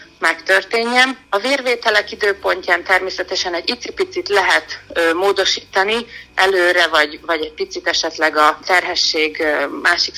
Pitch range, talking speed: 170-200 Hz, 110 wpm